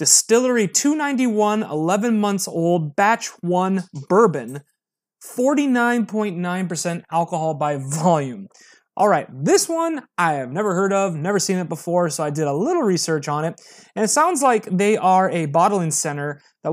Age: 30-49